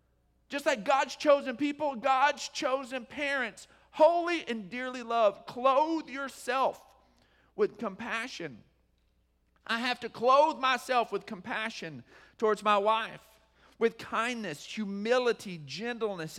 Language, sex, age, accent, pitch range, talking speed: English, male, 40-59, American, 205-270 Hz, 110 wpm